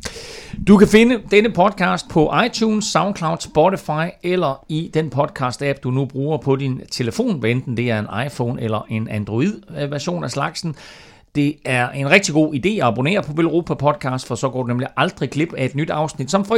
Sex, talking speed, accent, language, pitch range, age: male, 190 wpm, native, Danish, 120-175 Hz, 40-59